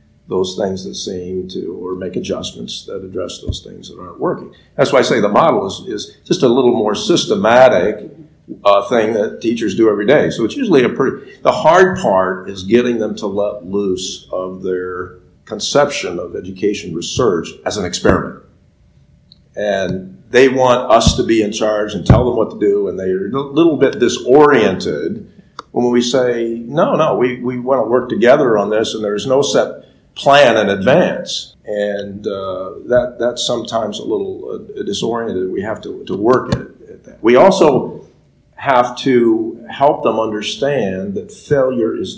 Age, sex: 50-69, male